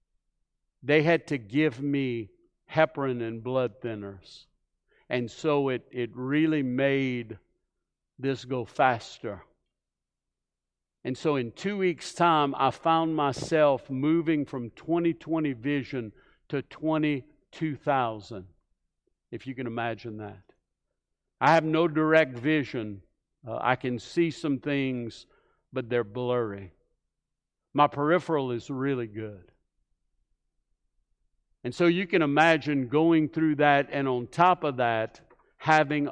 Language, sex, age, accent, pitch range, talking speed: English, male, 60-79, American, 110-150 Hz, 120 wpm